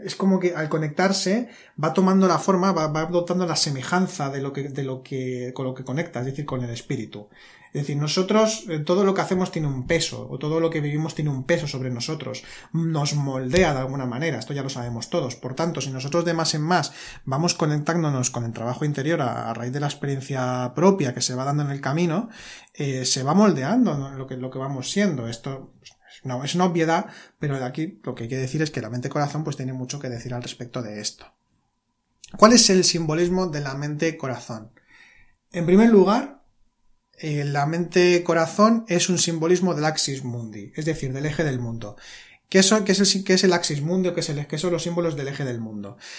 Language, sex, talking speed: Spanish, male, 205 wpm